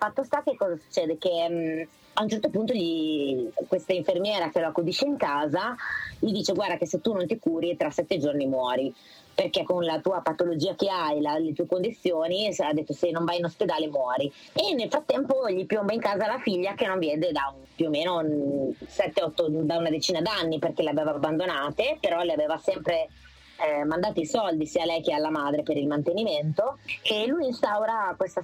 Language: Italian